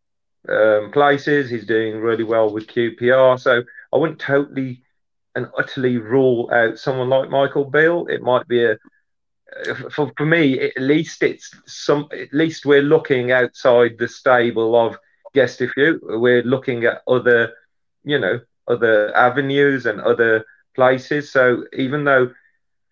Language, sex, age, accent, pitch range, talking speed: English, male, 40-59, British, 120-145 Hz, 145 wpm